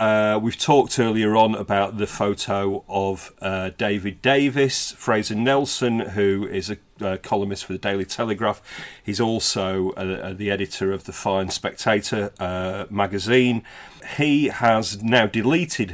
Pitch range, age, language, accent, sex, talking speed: 100-120 Hz, 40-59, English, British, male, 145 wpm